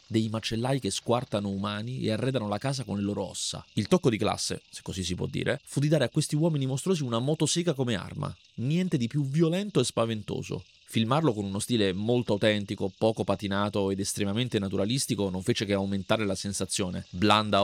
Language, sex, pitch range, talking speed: Italian, male, 100-130 Hz, 195 wpm